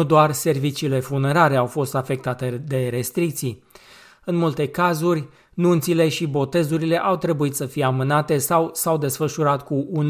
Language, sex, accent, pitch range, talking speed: Romanian, male, native, 135-165 Hz, 150 wpm